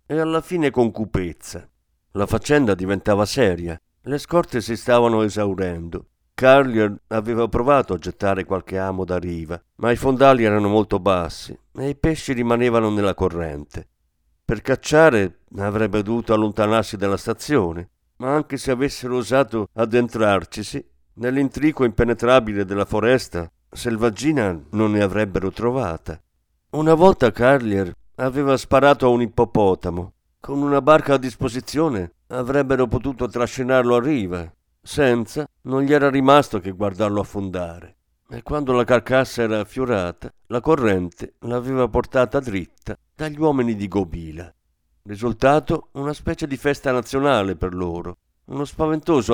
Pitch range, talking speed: 95-135 Hz, 130 wpm